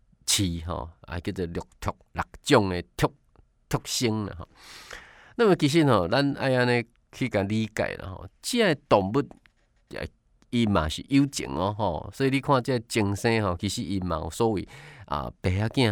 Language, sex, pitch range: Chinese, male, 90-130 Hz